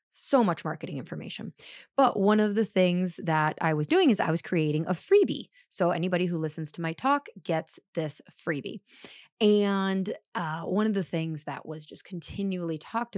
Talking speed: 180 wpm